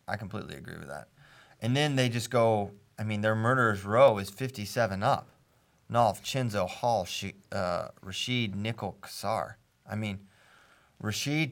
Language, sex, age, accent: English, male, 30-49, American